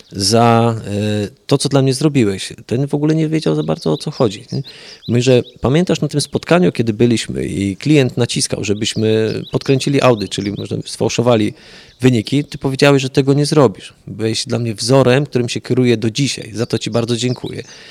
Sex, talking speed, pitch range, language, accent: male, 180 wpm, 105-135 Hz, Polish, native